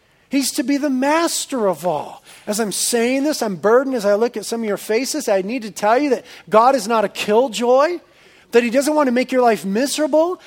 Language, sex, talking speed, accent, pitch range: English, male, 235 wpm, American, 205-280 Hz